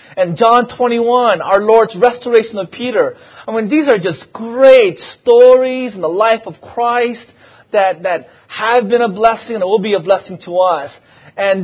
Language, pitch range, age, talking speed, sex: English, 175-235 Hz, 30-49, 175 wpm, male